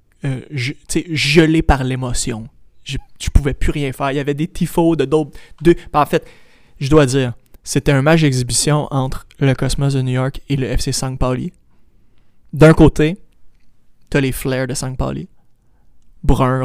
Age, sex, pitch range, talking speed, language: 20-39, male, 130-155 Hz, 175 wpm, French